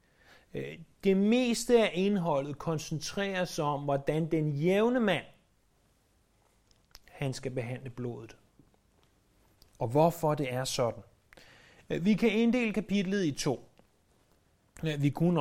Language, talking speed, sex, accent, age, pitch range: Danish, 105 wpm, male, native, 30-49, 125-170 Hz